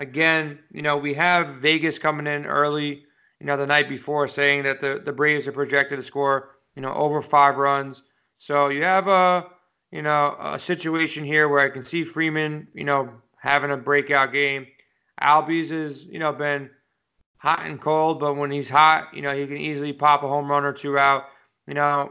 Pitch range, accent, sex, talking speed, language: 140-155 Hz, American, male, 200 wpm, English